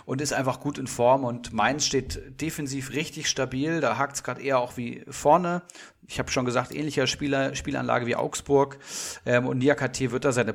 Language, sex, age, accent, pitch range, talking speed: German, male, 40-59, German, 125-145 Hz, 200 wpm